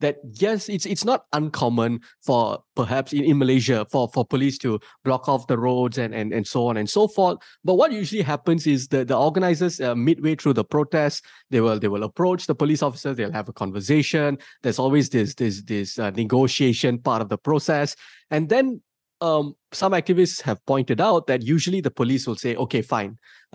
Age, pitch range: 20-39, 120-155 Hz